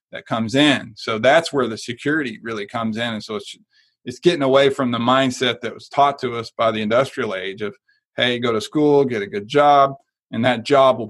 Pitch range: 120-150 Hz